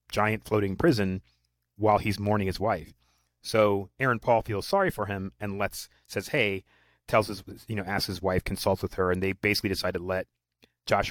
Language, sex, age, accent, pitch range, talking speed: English, male, 30-49, American, 95-110 Hz, 195 wpm